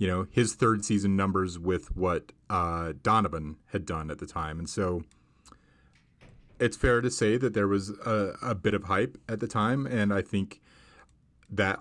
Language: English